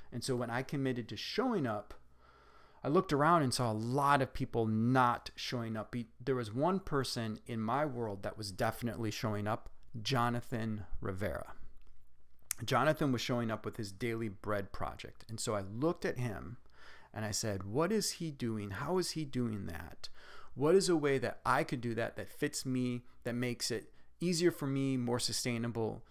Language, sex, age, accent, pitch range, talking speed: English, male, 30-49, American, 110-135 Hz, 185 wpm